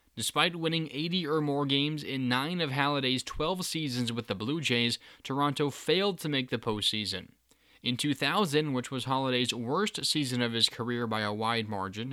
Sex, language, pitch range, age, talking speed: male, English, 120-155 Hz, 20-39, 180 wpm